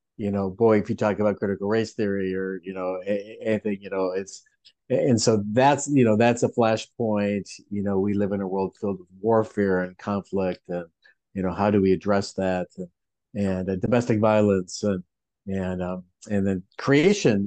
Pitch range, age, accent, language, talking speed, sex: 95-125 Hz, 50-69, American, English, 190 wpm, male